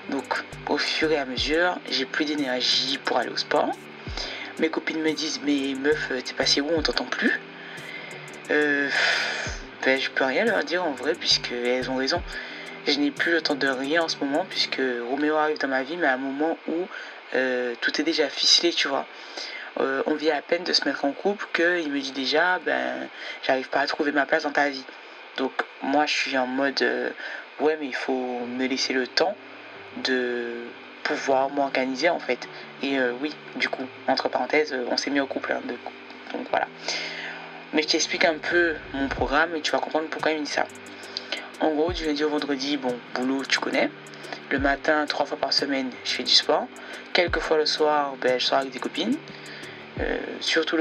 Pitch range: 130-155 Hz